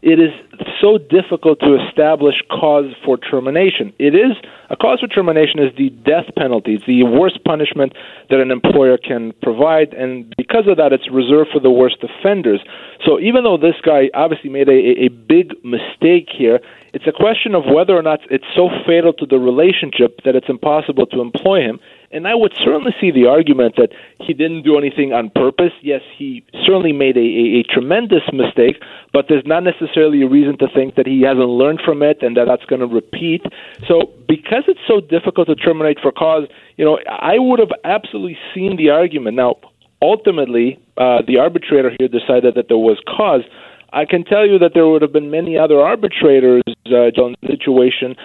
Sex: male